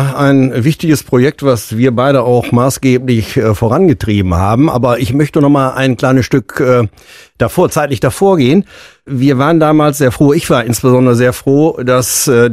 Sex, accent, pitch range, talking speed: male, German, 125-140 Hz, 170 wpm